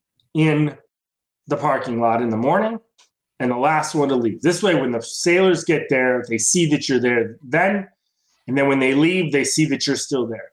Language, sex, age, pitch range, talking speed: English, male, 30-49, 115-160 Hz, 210 wpm